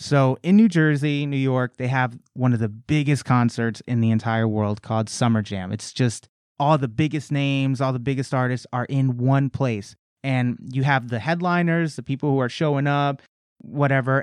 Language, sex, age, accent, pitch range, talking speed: English, male, 30-49, American, 115-150 Hz, 195 wpm